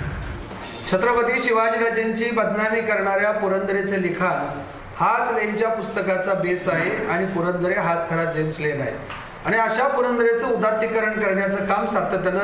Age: 40-59